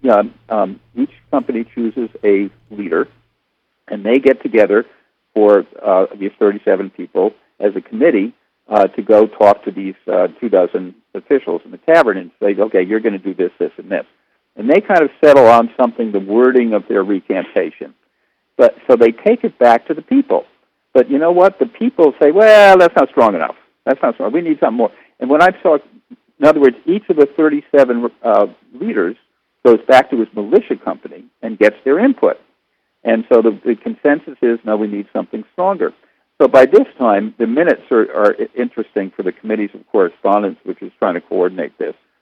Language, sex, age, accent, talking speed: English, male, 50-69, American, 195 wpm